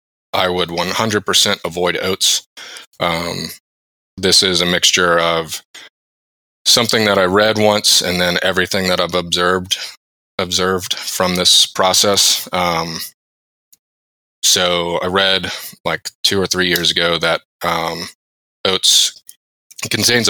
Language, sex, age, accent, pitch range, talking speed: English, male, 20-39, American, 80-90 Hz, 120 wpm